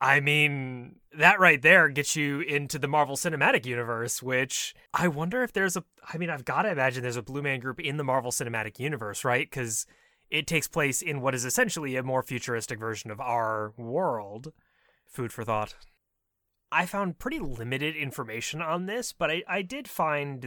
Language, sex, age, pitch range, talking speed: English, male, 20-39, 120-160 Hz, 190 wpm